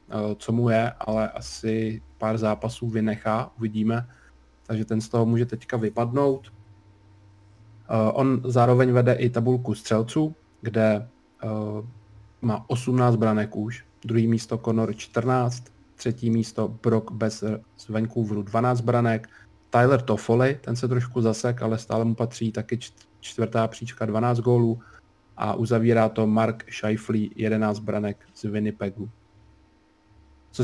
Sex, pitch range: male, 110-120 Hz